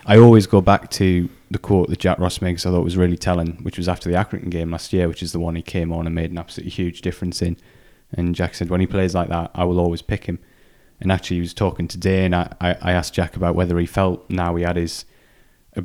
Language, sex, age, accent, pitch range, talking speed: English, male, 20-39, British, 85-95 Hz, 275 wpm